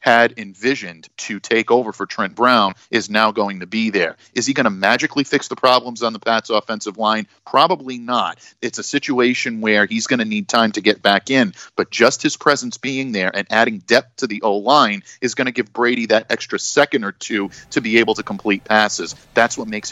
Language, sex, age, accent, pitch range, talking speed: English, male, 40-59, American, 105-135 Hz, 220 wpm